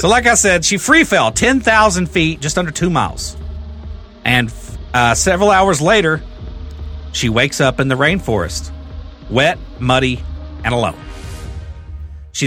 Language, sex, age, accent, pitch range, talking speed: English, male, 40-59, American, 110-175 Hz, 140 wpm